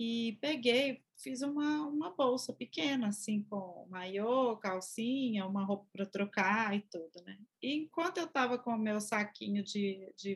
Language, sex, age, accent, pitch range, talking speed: Portuguese, female, 20-39, Brazilian, 210-280 Hz, 160 wpm